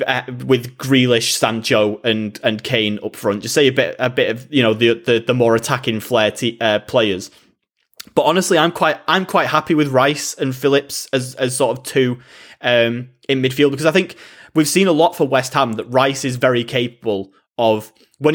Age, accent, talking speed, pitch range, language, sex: 20-39, British, 205 wpm, 115-140 Hz, English, male